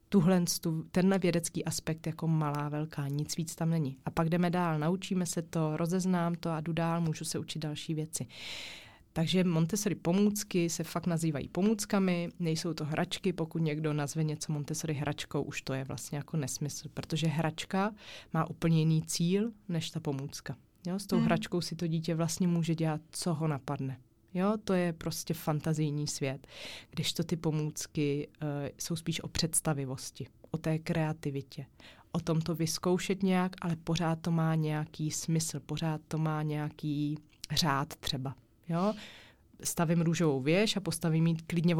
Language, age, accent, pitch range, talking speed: Czech, 30-49, native, 150-170 Hz, 160 wpm